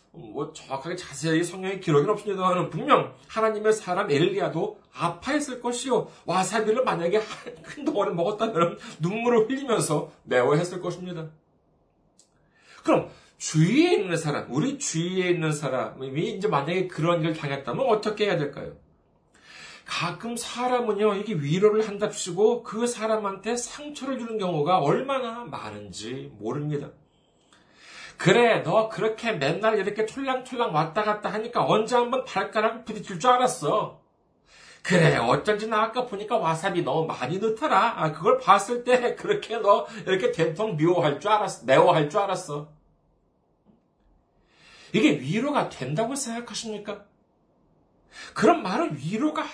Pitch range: 160-225 Hz